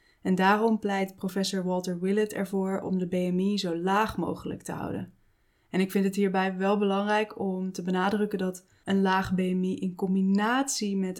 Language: Dutch